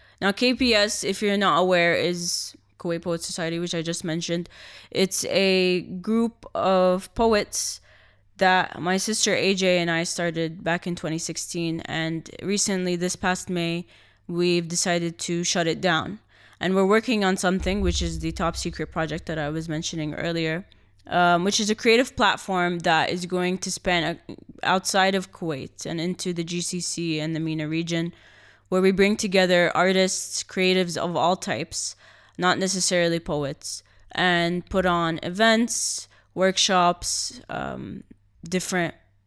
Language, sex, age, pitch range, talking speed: English, female, 20-39, 165-190 Hz, 150 wpm